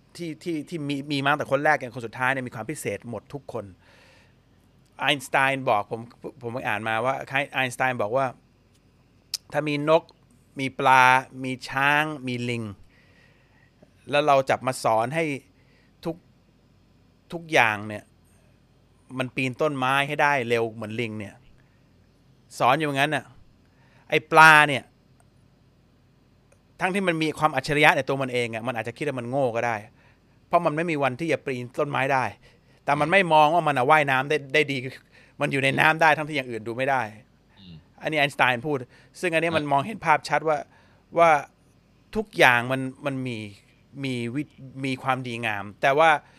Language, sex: Thai, male